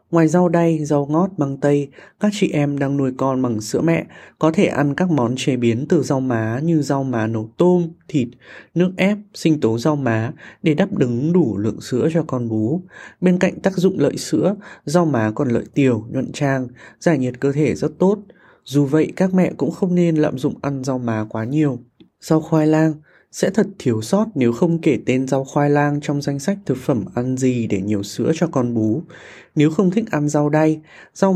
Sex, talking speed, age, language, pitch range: male, 220 wpm, 20-39, Vietnamese, 125-165 Hz